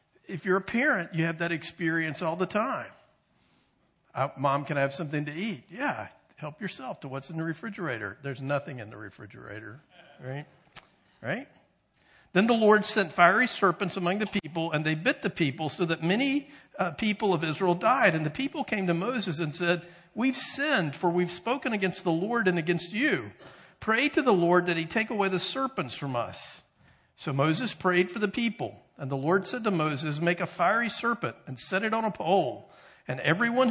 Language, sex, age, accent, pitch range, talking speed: English, male, 50-69, American, 140-195 Hz, 195 wpm